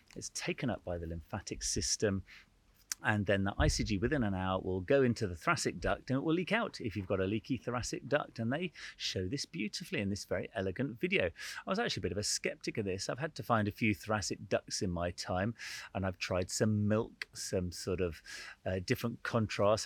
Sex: male